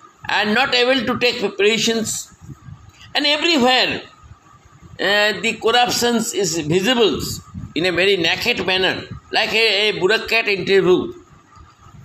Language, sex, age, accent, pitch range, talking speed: English, male, 60-79, Indian, 195-260 Hz, 115 wpm